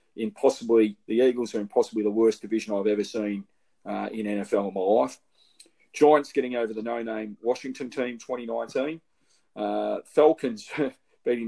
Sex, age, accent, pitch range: male, 40-59, Australian, 105-145 Hz